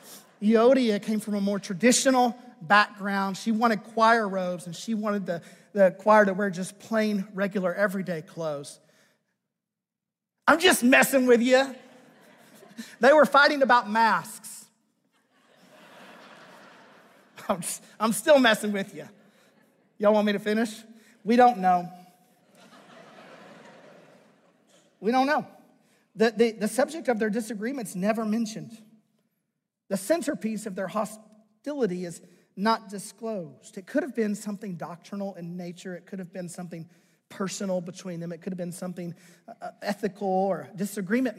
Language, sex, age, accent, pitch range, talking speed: English, male, 40-59, American, 190-230 Hz, 135 wpm